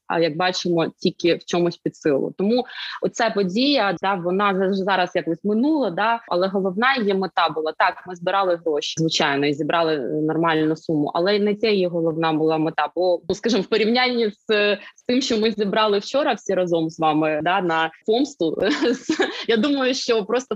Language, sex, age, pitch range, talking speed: Ukrainian, female, 20-39, 160-205 Hz, 180 wpm